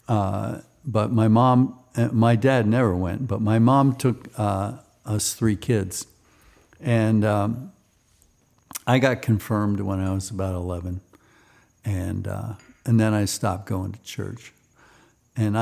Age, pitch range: 60-79, 100-120 Hz